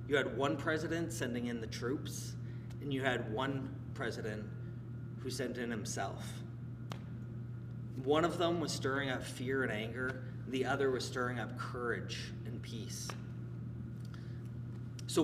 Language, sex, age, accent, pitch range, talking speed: English, male, 30-49, American, 120-135 Hz, 140 wpm